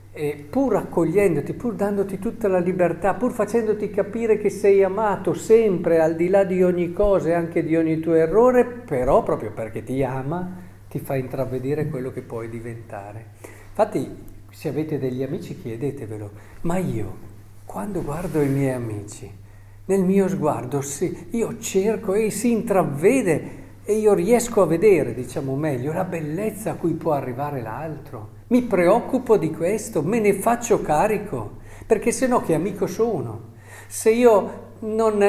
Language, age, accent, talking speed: Italian, 50-69, native, 155 wpm